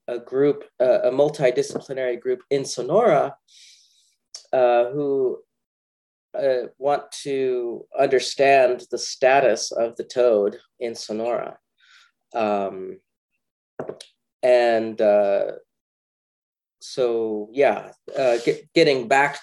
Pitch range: 115-170 Hz